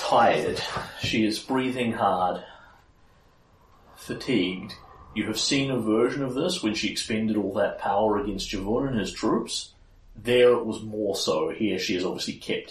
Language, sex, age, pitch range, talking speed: English, male, 40-59, 90-115 Hz, 160 wpm